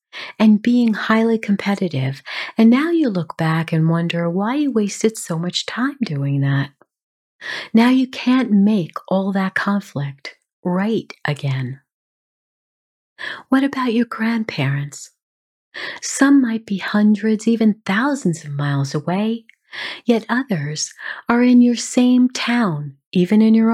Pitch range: 170-230 Hz